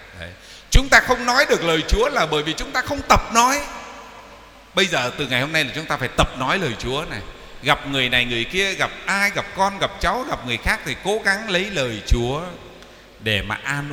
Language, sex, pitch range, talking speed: Vietnamese, male, 115-180 Hz, 235 wpm